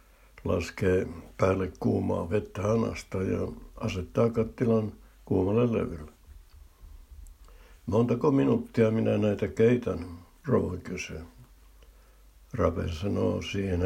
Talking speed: 80 wpm